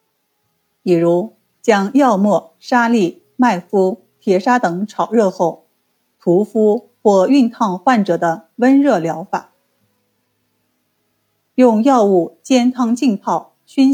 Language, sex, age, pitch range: Chinese, female, 50-69, 170-240 Hz